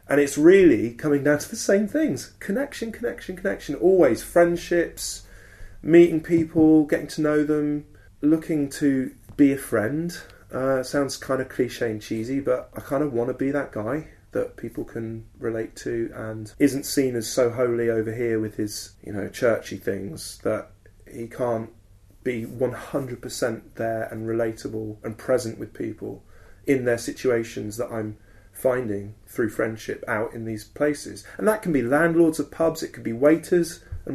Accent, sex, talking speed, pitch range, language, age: British, male, 170 wpm, 105-150 Hz, English, 30-49